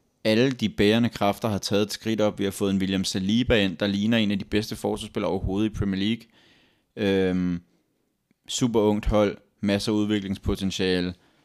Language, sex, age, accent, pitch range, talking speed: Danish, male, 30-49, native, 100-115 Hz, 180 wpm